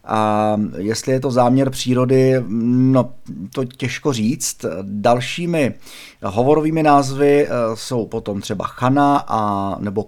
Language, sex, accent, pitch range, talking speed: Czech, male, native, 105-130 Hz, 115 wpm